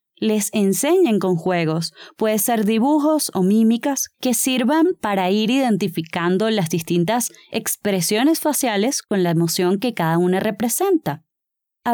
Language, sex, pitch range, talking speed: Spanish, female, 175-240 Hz, 130 wpm